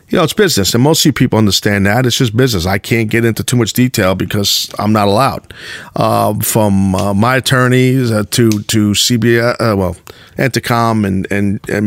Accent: American